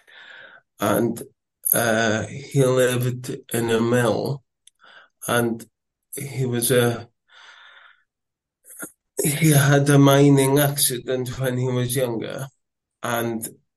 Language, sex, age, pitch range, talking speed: English, male, 20-39, 115-135 Hz, 90 wpm